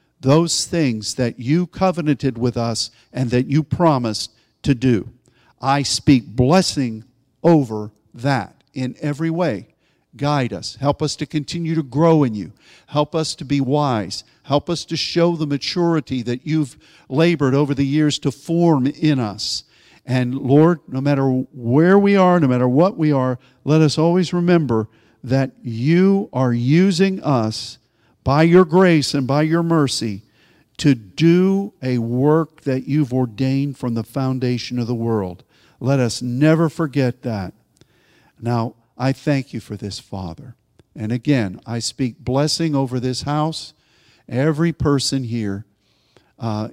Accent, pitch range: American, 115-150 Hz